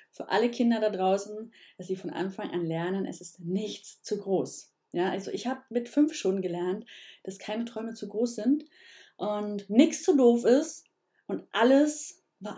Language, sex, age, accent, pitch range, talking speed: German, female, 30-49, German, 185-245 Hz, 180 wpm